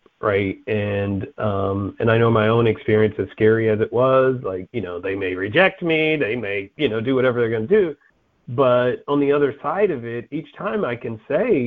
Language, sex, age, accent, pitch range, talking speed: English, male, 40-59, American, 100-125 Hz, 220 wpm